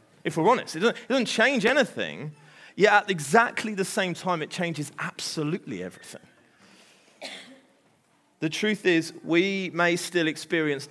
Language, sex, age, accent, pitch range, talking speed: English, male, 30-49, British, 130-175 Hz, 140 wpm